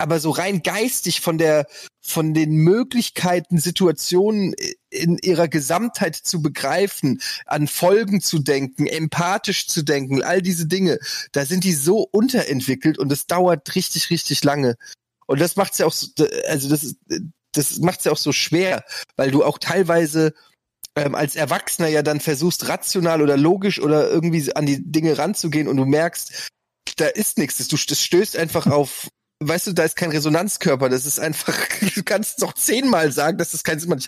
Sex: male